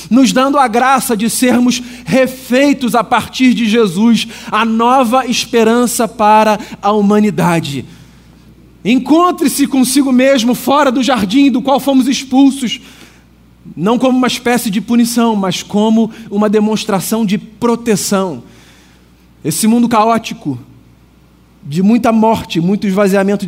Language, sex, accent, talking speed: Portuguese, male, Brazilian, 120 wpm